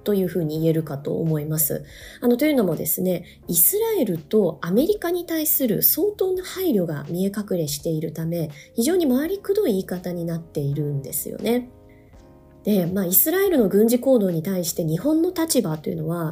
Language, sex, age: Japanese, female, 20-39